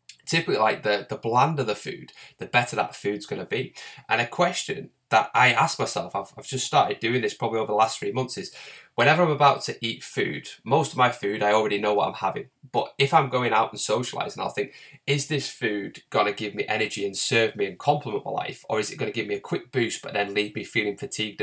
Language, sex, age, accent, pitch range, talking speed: English, male, 10-29, British, 105-140 Hz, 245 wpm